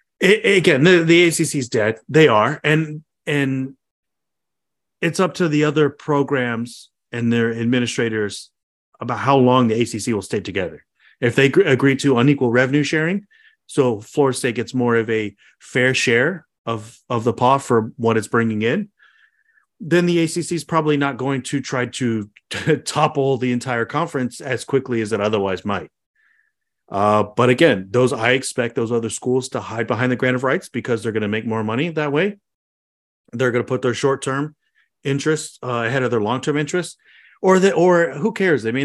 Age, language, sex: 30-49, English, male